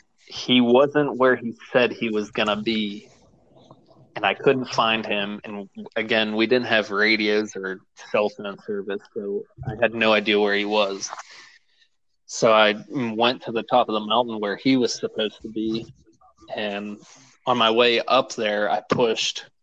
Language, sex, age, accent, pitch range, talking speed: English, male, 20-39, American, 105-120 Hz, 170 wpm